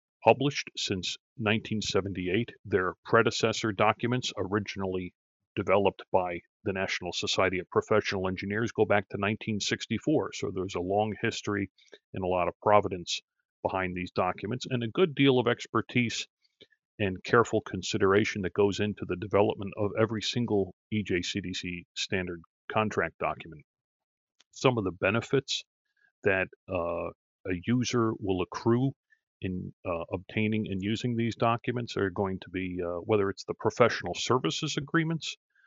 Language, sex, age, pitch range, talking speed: English, male, 40-59, 95-120 Hz, 135 wpm